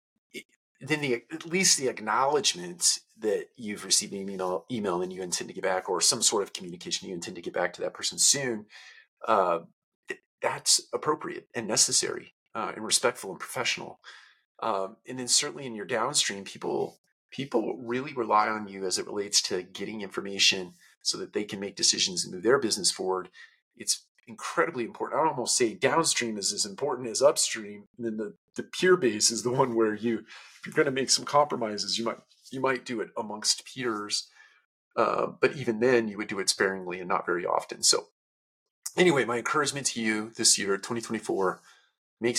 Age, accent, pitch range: 40-59, American, 100-135 Hz